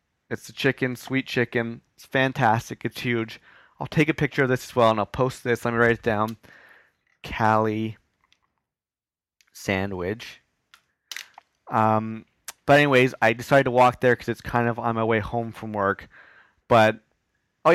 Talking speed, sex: 160 wpm, male